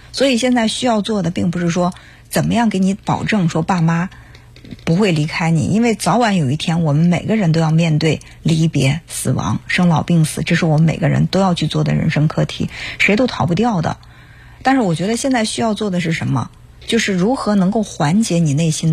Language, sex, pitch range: Chinese, female, 155-210 Hz